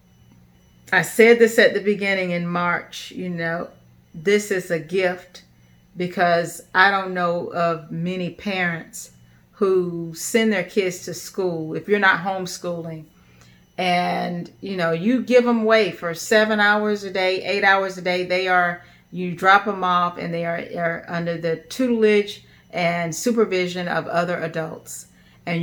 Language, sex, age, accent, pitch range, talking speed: English, female, 40-59, American, 170-205 Hz, 155 wpm